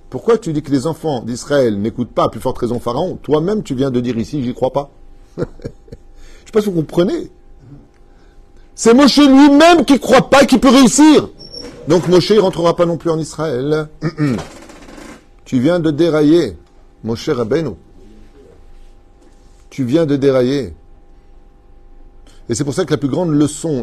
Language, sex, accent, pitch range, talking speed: French, male, French, 120-175 Hz, 170 wpm